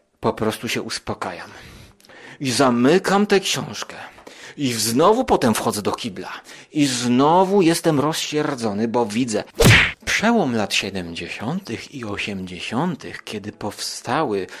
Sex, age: male, 30-49